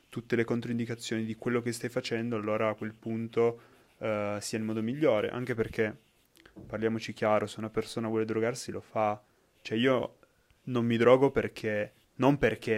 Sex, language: male, Italian